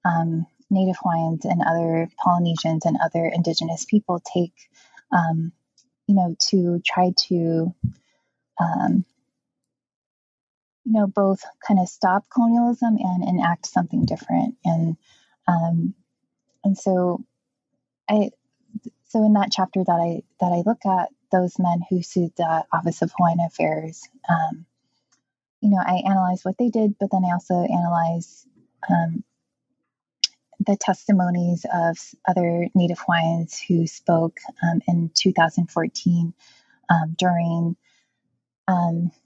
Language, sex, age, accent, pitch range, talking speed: English, female, 20-39, American, 165-195 Hz, 125 wpm